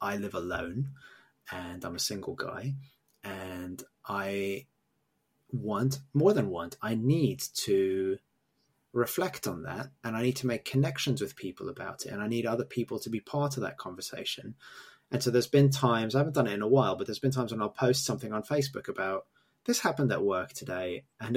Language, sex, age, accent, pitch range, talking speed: English, male, 20-39, British, 95-135 Hz, 195 wpm